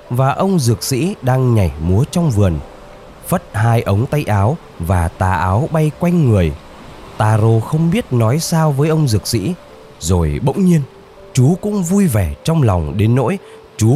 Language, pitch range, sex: Vietnamese, 85-130 Hz, male